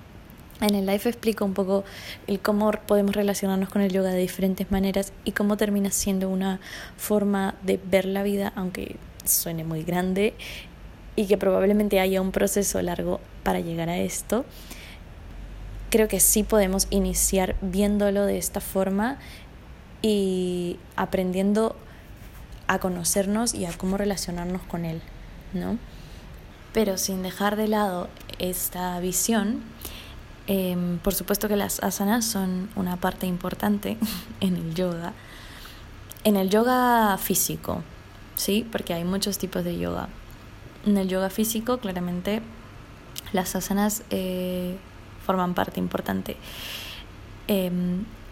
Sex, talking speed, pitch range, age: female, 130 wpm, 175-210 Hz, 20-39